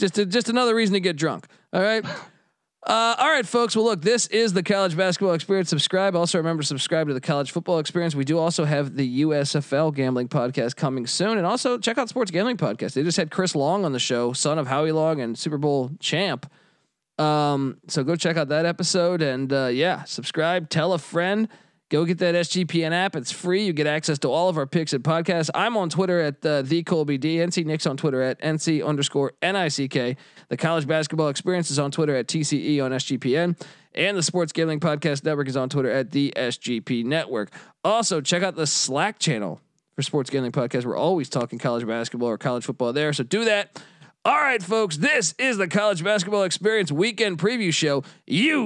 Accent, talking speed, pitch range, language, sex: American, 210 wpm, 145-190 Hz, English, male